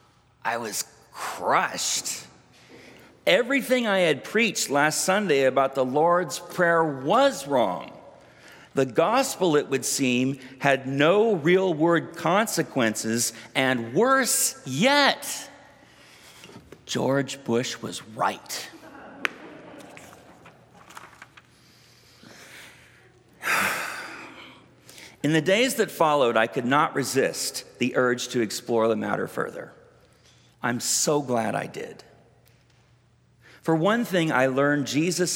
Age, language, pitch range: 50-69, English, 125-165 Hz